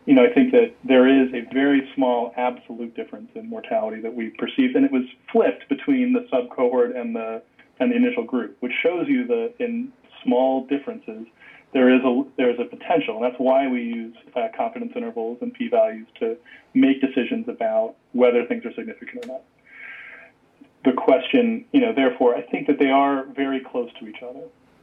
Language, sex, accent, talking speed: English, male, American, 185 wpm